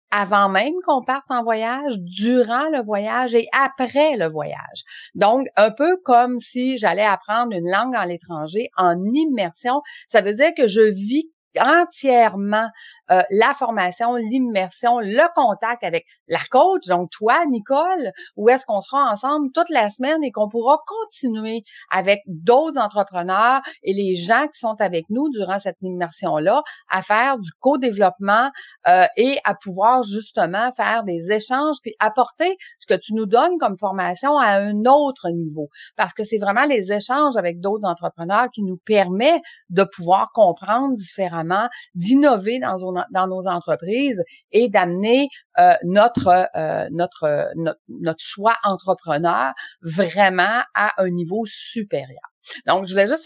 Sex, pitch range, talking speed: female, 190-265 Hz, 155 wpm